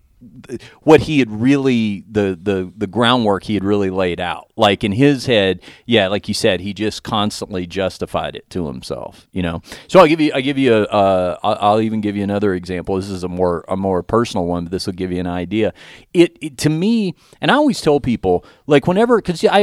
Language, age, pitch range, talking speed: English, 40-59, 95-135 Hz, 225 wpm